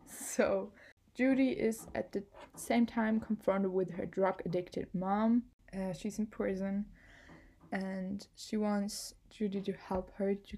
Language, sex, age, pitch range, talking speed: English, female, 20-39, 185-225 Hz, 140 wpm